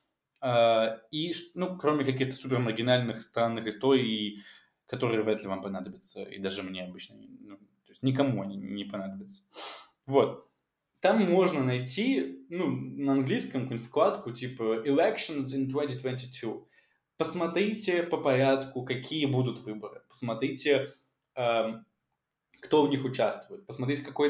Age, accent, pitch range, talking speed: 20-39, native, 110-135 Hz, 130 wpm